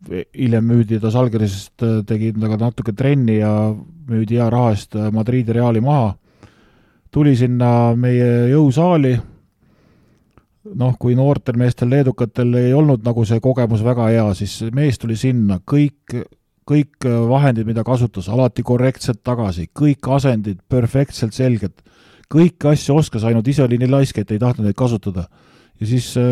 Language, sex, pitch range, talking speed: English, male, 115-140 Hz, 130 wpm